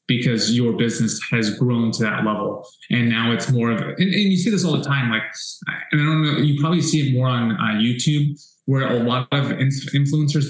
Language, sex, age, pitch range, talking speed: English, male, 20-39, 120-150 Hz, 225 wpm